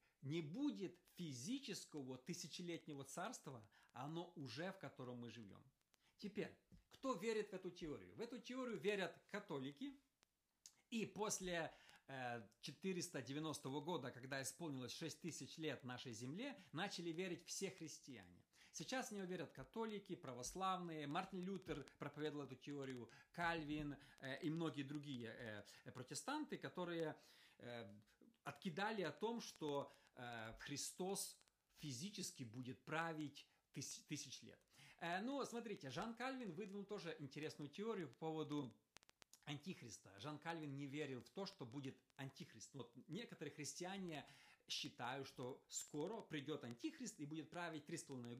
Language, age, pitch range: Russian, 50-69, 135-185 Hz